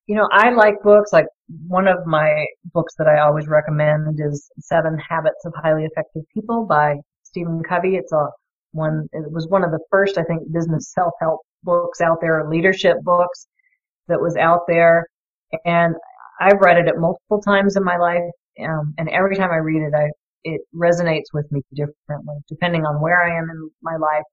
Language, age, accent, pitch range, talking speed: English, 40-59, American, 155-175 Hz, 190 wpm